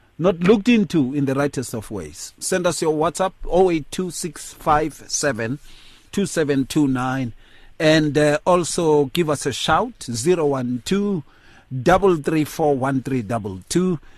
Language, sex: English, male